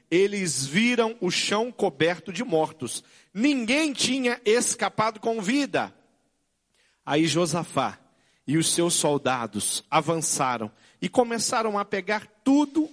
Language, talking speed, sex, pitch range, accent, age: Portuguese, 110 wpm, male, 145-195 Hz, Brazilian, 40-59